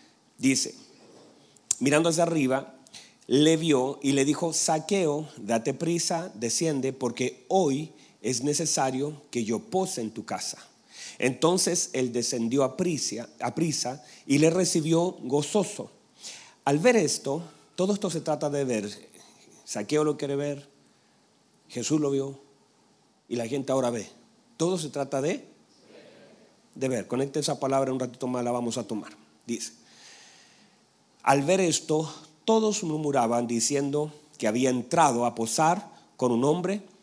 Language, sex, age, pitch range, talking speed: Spanish, male, 40-59, 130-175 Hz, 140 wpm